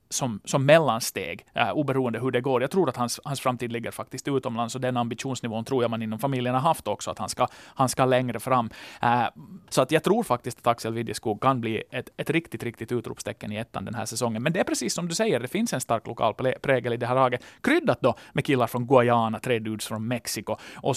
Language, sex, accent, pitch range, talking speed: Swedish, male, Finnish, 120-170 Hz, 240 wpm